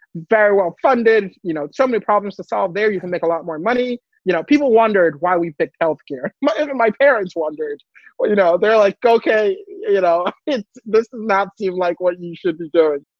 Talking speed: 215 wpm